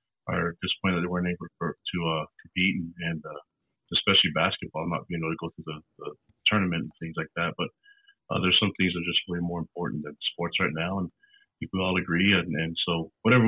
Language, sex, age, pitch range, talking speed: English, male, 30-49, 90-105 Hz, 225 wpm